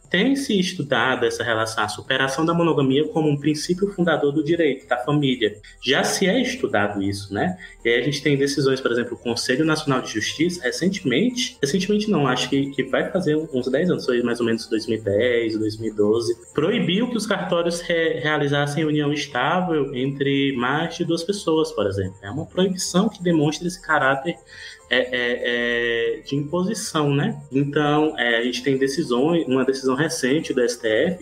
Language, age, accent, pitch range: Portuguese, 20-39, Brazilian, 130-180 Hz